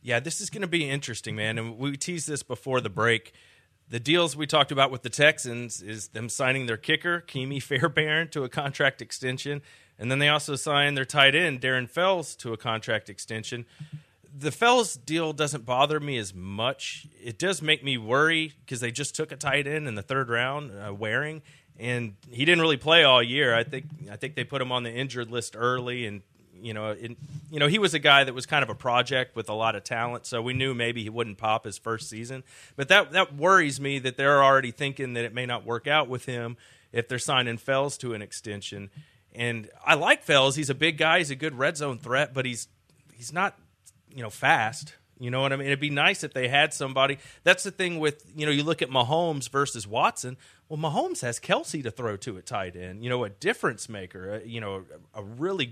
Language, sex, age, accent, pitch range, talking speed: English, male, 30-49, American, 115-150 Hz, 230 wpm